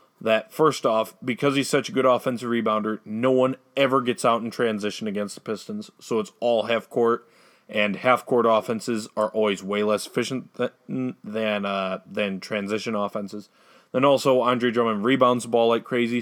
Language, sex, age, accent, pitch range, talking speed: English, male, 30-49, American, 115-145 Hz, 180 wpm